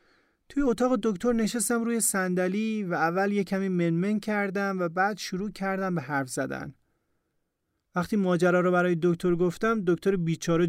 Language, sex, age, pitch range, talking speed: Persian, male, 30-49, 155-195 Hz, 150 wpm